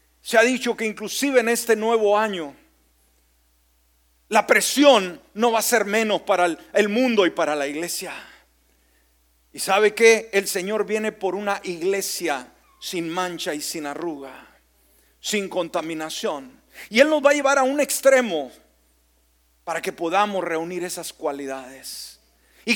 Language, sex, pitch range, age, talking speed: Spanish, male, 160-240 Hz, 40-59, 145 wpm